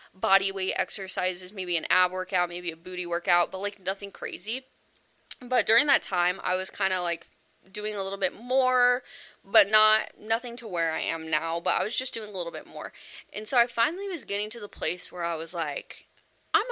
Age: 20-39